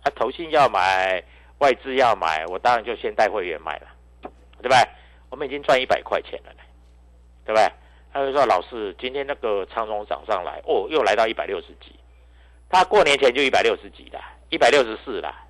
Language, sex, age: Chinese, male, 50-69